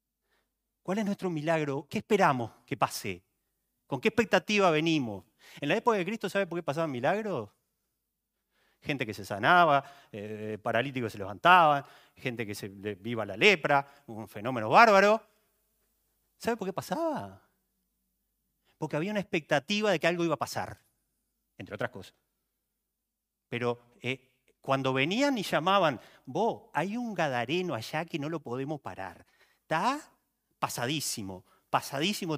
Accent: Argentinian